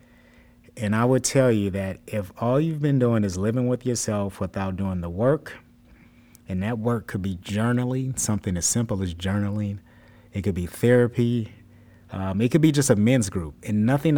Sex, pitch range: male, 95-120 Hz